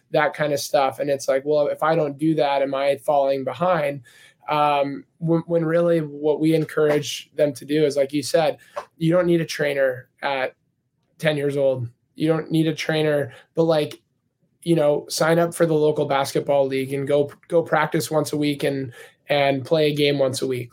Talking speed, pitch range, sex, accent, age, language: 205 wpm, 135-155 Hz, male, American, 20-39, English